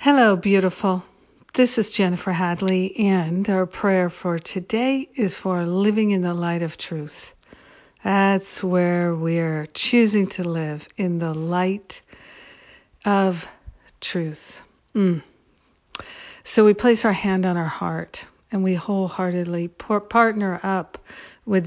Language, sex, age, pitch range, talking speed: English, female, 60-79, 180-200 Hz, 125 wpm